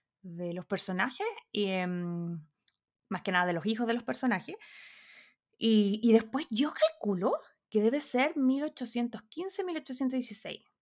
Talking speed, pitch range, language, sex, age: 115 wpm, 180-255 Hz, Spanish, female, 20-39